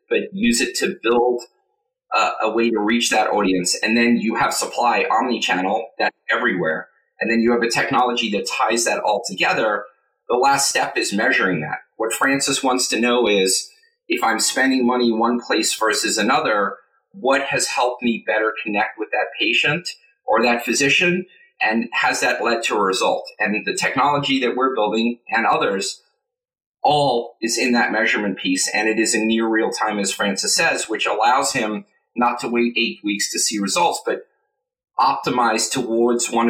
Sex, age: male, 30-49